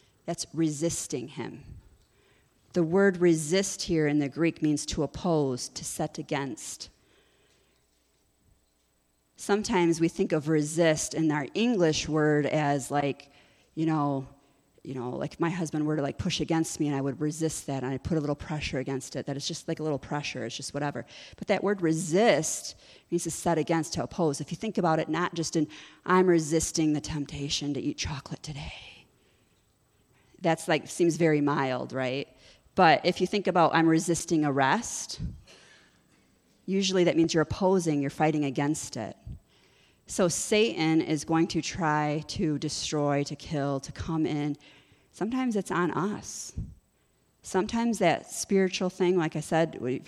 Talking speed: 165 wpm